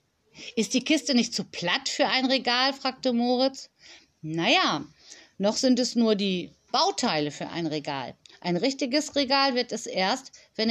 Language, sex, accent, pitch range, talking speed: German, female, German, 185-270 Hz, 155 wpm